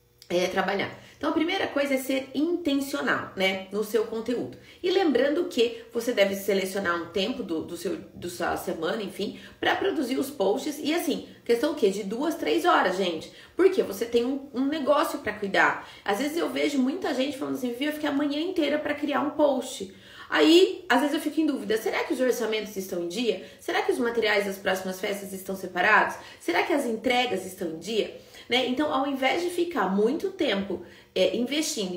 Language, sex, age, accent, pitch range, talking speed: Portuguese, female, 30-49, Brazilian, 200-300 Hz, 200 wpm